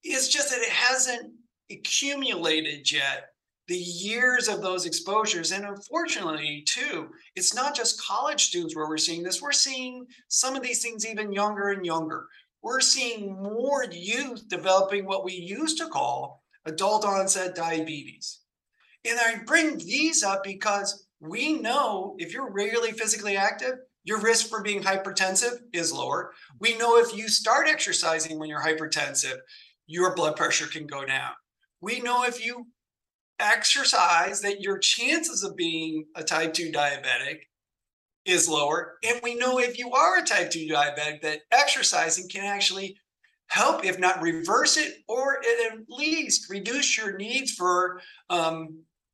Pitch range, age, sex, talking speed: 175-245 Hz, 50-69, male, 155 wpm